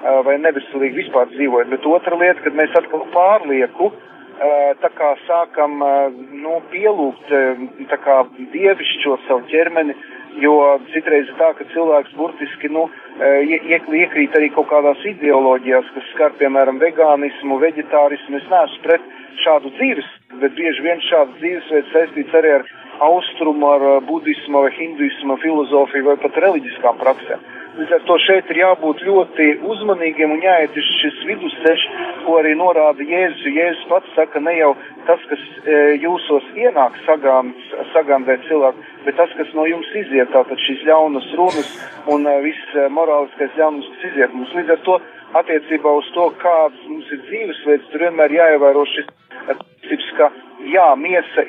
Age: 40-59